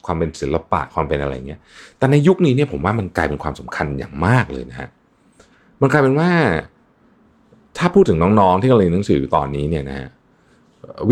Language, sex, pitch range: Thai, male, 80-130 Hz